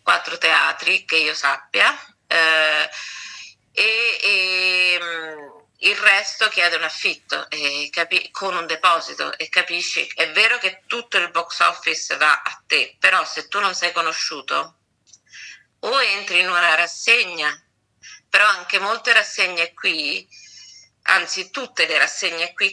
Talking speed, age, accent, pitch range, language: 130 wpm, 40-59, native, 160-185 Hz, Italian